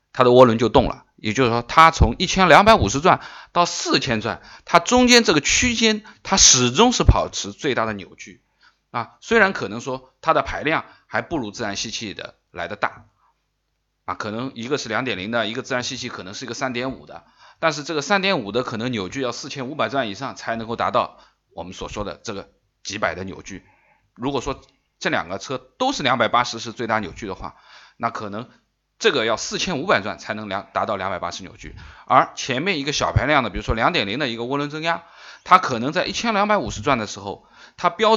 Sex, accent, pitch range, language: male, native, 110-160 Hz, Chinese